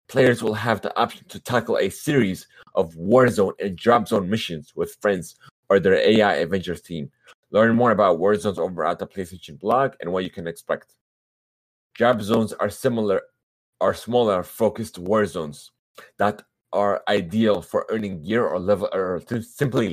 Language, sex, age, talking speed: English, male, 30-49, 175 wpm